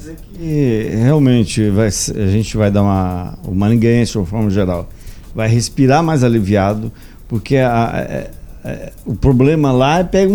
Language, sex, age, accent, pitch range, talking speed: Portuguese, male, 50-69, Brazilian, 105-130 Hz, 170 wpm